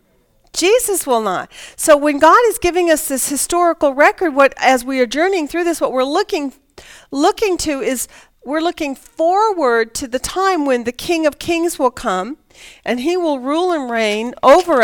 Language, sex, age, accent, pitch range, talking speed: English, female, 40-59, American, 215-295 Hz, 180 wpm